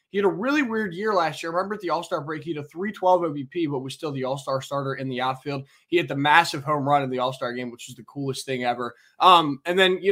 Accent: American